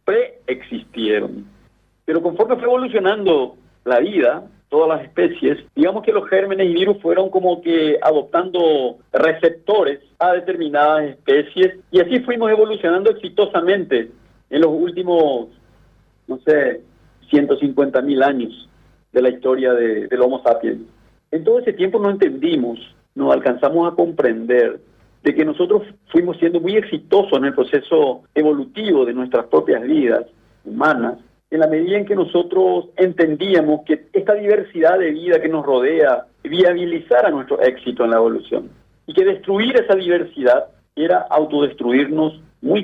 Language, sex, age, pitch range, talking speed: Spanish, male, 50-69, 145-215 Hz, 140 wpm